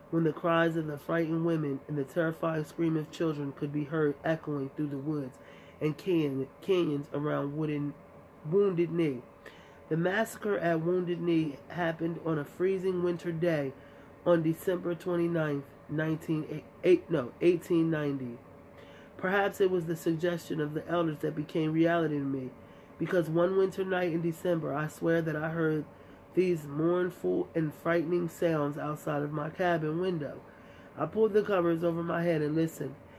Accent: American